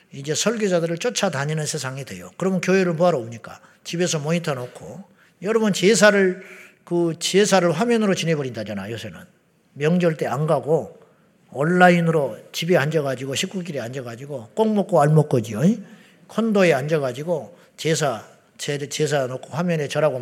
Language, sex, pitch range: Korean, male, 160-205 Hz